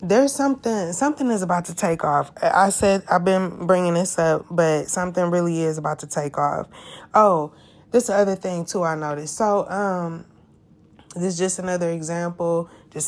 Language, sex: English, female